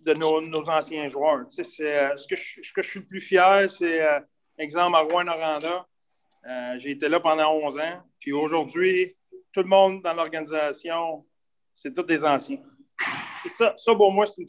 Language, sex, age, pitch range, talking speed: French, male, 30-49, 155-200 Hz, 200 wpm